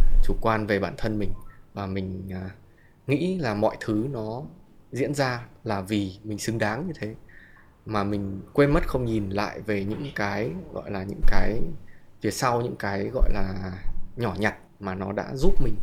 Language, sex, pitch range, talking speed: Vietnamese, male, 100-120 Hz, 185 wpm